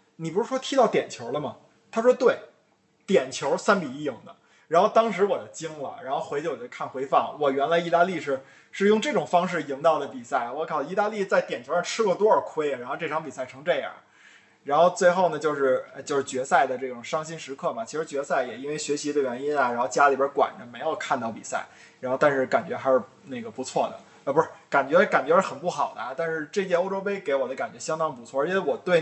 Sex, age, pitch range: male, 20-39, 140-195 Hz